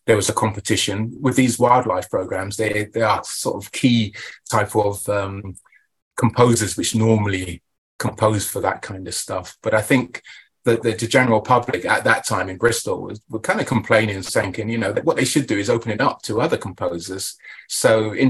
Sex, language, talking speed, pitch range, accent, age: male, English, 200 wpm, 100-125 Hz, British, 30-49